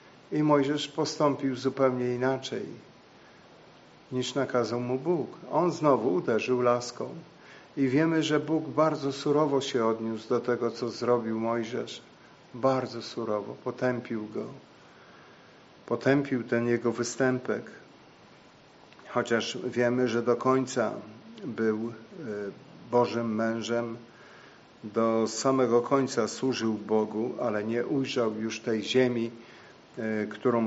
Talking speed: 105 wpm